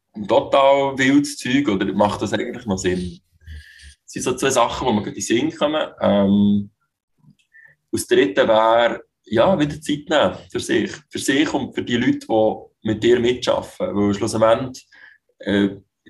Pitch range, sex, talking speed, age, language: 100-120 Hz, male, 155 wpm, 20-39, German